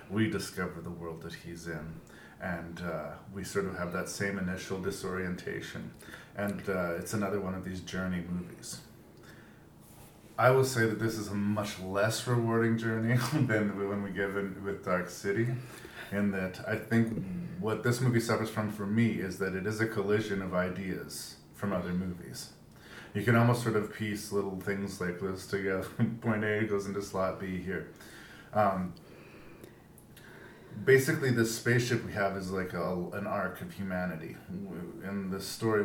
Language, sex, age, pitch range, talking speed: English, male, 40-59, 90-110 Hz, 165 wpm